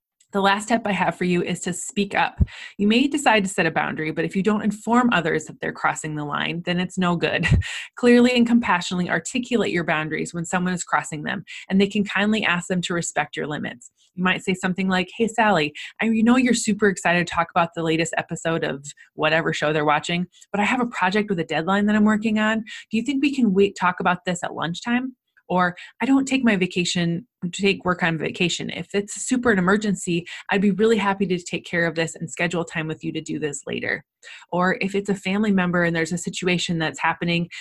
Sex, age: female, 20-39